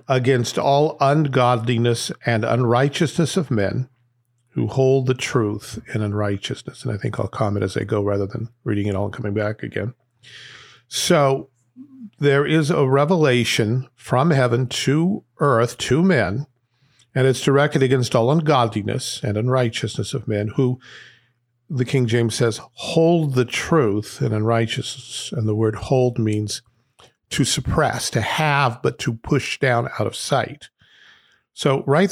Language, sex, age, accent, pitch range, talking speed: English, male, 50-69, American, 115-140 Hz, 150 wpm